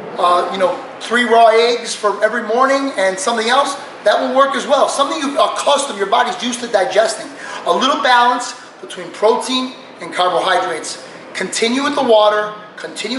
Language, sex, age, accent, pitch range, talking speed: English, male, 30-49, American, 200-255 Hz, 175 wpm